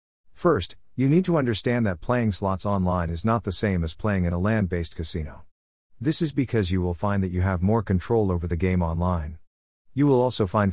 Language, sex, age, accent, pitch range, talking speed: English, male, 50-69, American, 90-115 Hz, 215 wpm